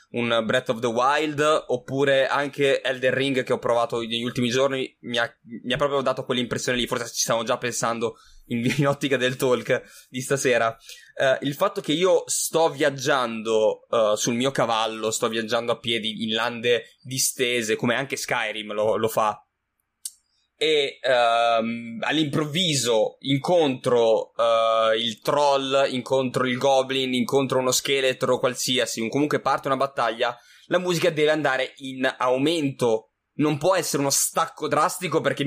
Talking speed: 150 wpm